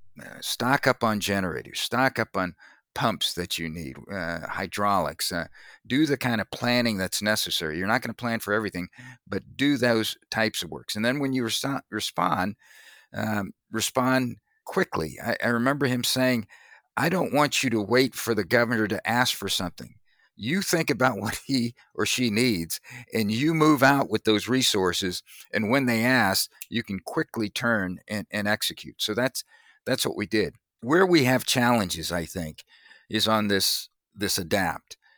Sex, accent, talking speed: male, American, 175 wpm